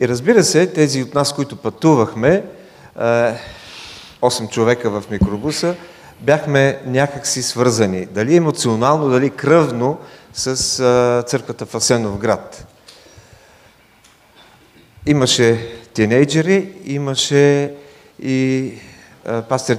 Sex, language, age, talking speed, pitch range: male, English, 40-59, 90 wpm, 115-140 Hz